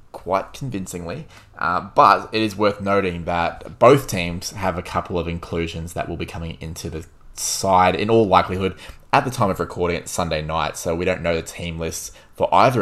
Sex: male